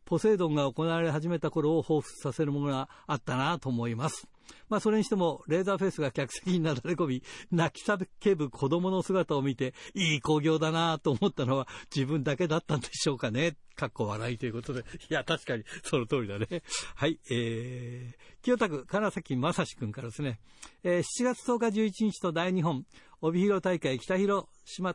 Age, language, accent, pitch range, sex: 60-79, Japanese, native, 140-185 Hz, male